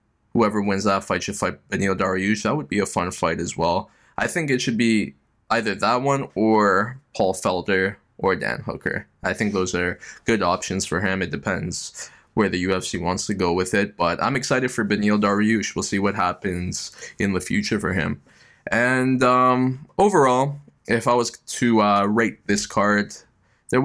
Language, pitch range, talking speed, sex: English, 95-115 Hz, 190 wpm, male